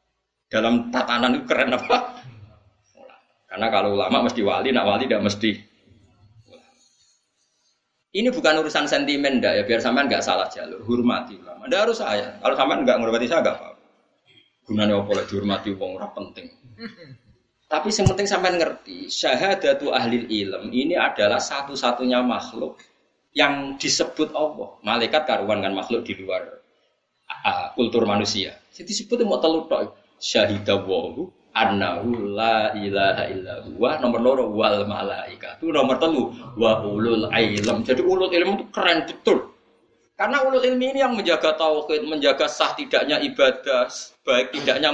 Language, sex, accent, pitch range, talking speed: Indonesian, male, native, 110-155 Hz, 130 wpm